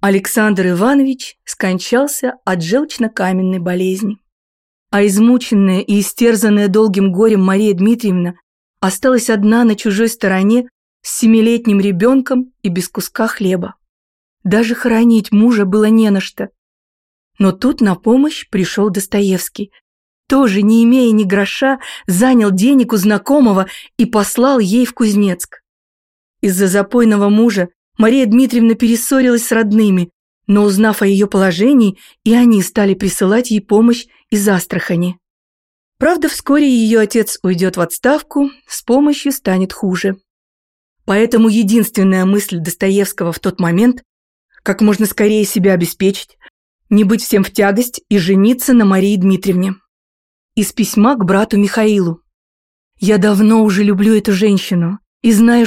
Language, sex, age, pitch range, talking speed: Russian, female, 30-49, 190-235 Hz, 130 wpm